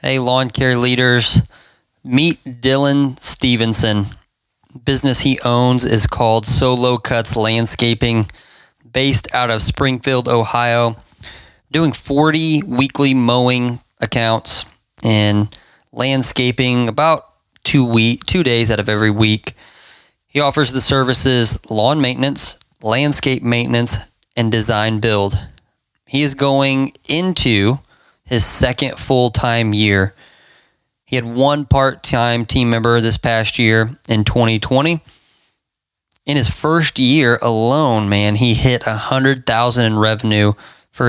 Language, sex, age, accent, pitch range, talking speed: English, male, 20-39, American, 110-135 Hz, 110 wpm